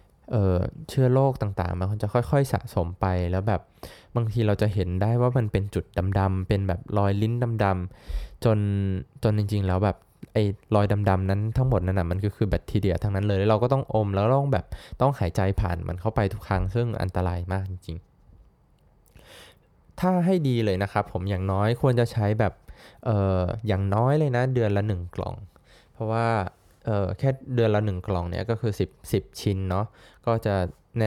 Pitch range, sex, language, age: 95-110 Hz, male, Thai, 20-39